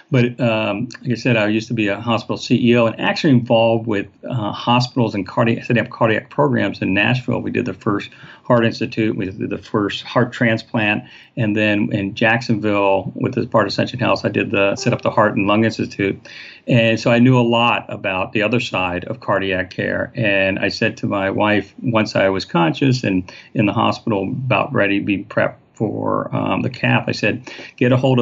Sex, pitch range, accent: male, 100-120 Hz, American